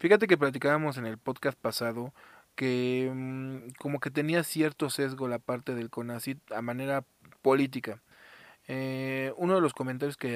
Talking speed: 150 wpm